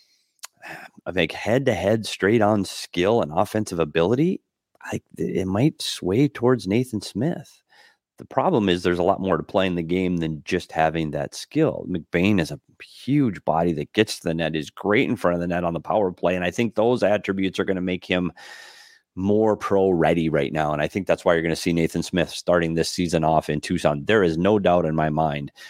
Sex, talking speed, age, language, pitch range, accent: male, 210 wpm, 30-49, English, 80-100 Hz, American